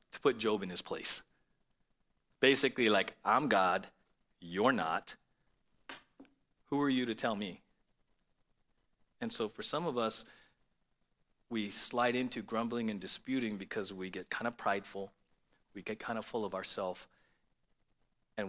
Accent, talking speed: American, 145 wpm